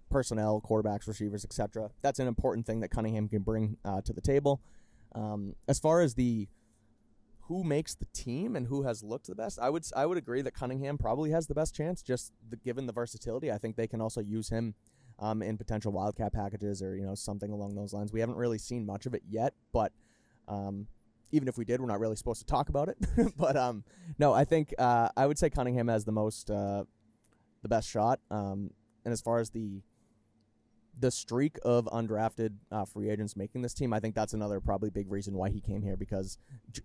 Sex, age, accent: male, 20-39, American